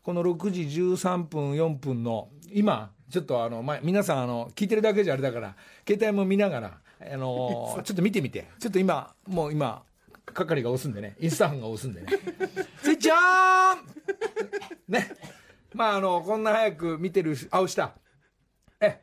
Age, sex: 50-69, male